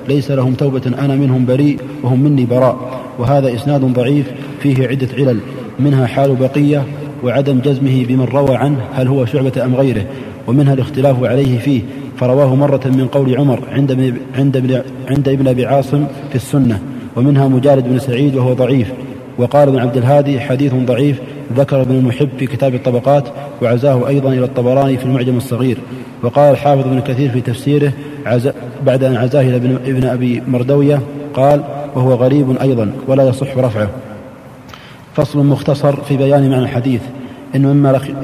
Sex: male